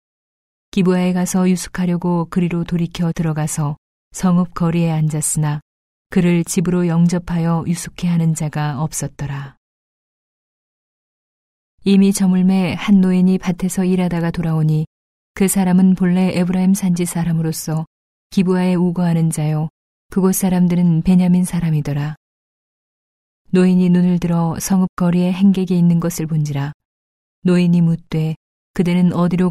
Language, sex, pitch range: Korean, female, 160-180 Hz